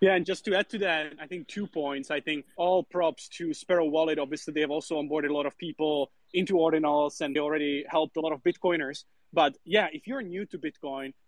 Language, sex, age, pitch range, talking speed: English, male, 20-39, 155-185 Hz, 235 wpm